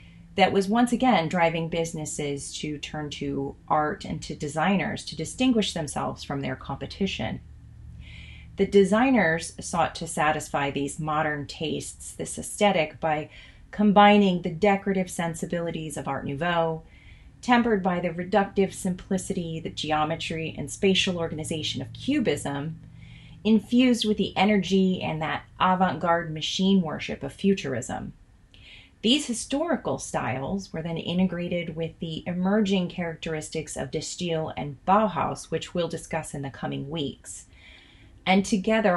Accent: American